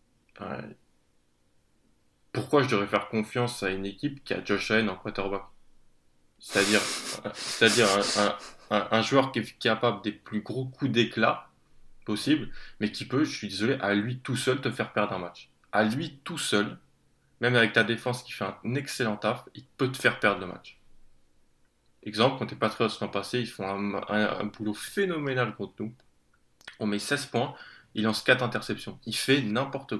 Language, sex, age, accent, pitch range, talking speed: French, male, 20-39, French, 100-125 Hz, 185 wpm